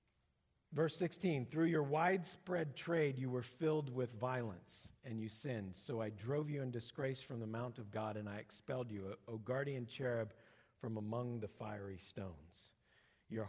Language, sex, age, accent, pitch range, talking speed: English, male, 50-69, American, 105-135 Hz, 170 wpm